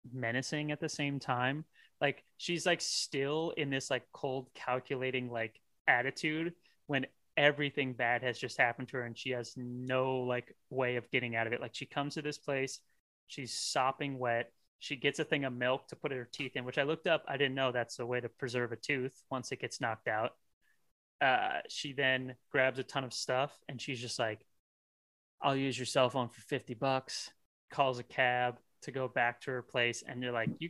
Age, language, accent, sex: 20-39, English, American, male